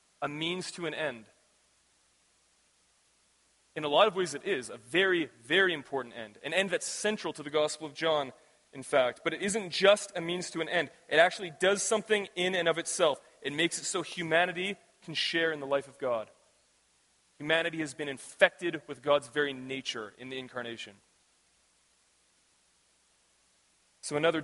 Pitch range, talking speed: 130-180 Hz, 170 wpm